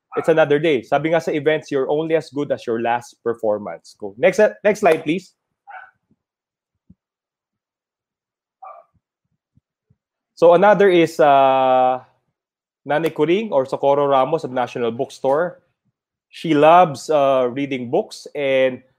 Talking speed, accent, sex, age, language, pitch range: 125 wpm, Filipino, male, 20-39, English, 130-160 Hz